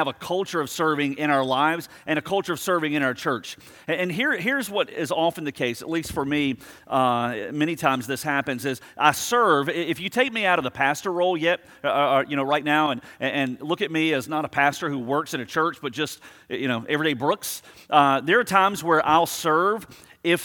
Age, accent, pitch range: 40-59, American, 145-180 Hz